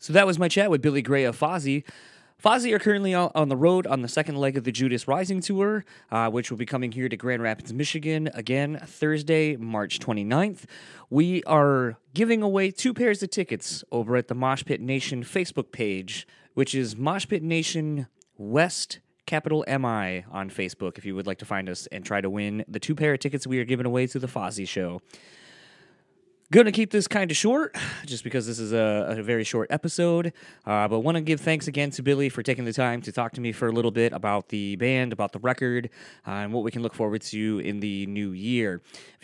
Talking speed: 220 wpm